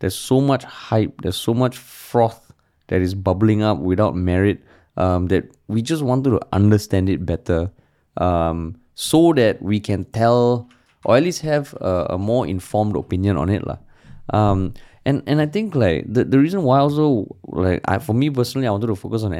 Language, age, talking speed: English, 20-39, 190 wpm